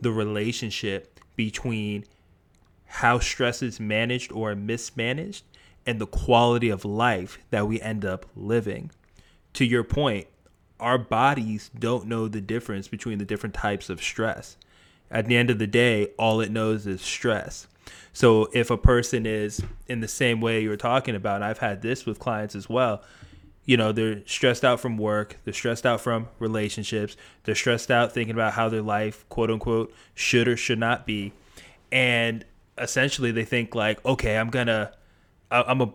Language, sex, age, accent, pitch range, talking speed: English, male, 20-39, American, 105-120 Hz, 170 wpm